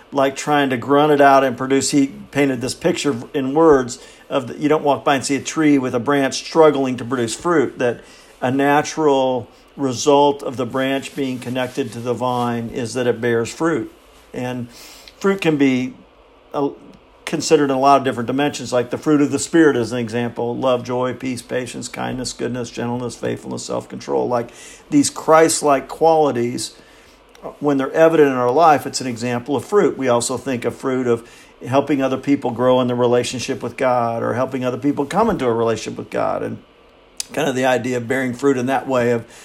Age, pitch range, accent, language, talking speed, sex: 50-69, 125-145 Hz, American, English, 195 wpm, male